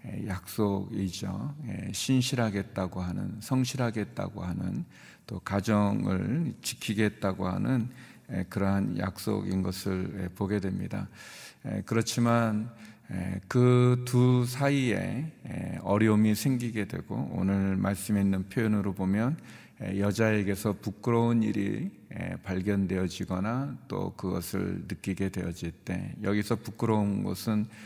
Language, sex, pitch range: Korean, male, 95-115 Hz